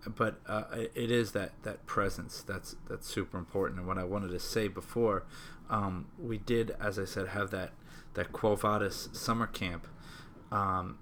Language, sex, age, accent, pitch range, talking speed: English, male, 20-39, American, 100-115 Hz, 175 wpm